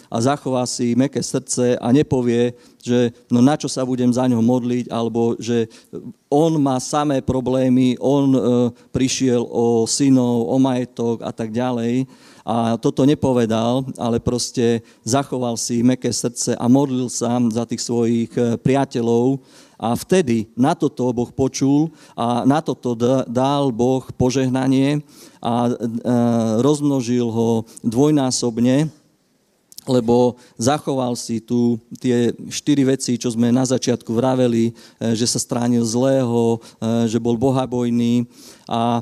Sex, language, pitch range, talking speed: male, Slovak, 120-130 Hz, 130 wpm